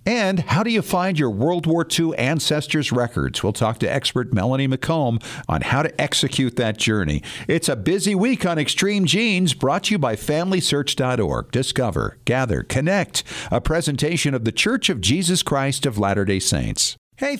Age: 50-69